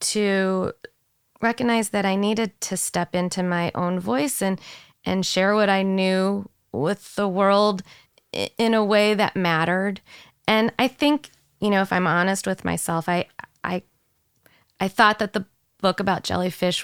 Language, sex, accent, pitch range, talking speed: English, female, American, 175-215 Hz, 155 wpm